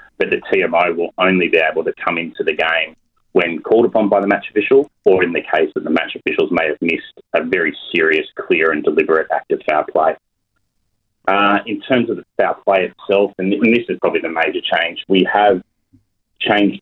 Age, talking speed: 30-49, 205 wpm